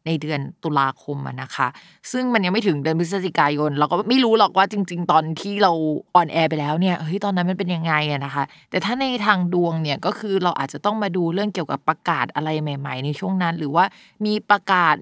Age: 20-39